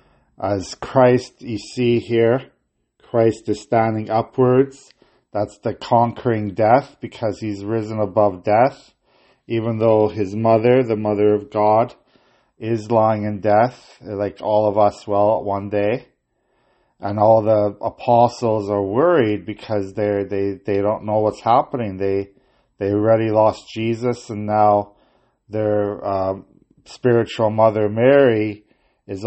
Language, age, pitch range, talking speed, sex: English, 40-59, 105-115 Hz, 130 wpm, male